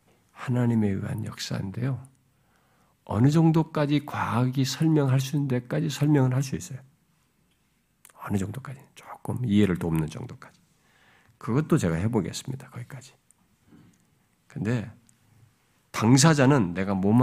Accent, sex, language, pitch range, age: native, male, Korean, 110-155 Hz, 50-69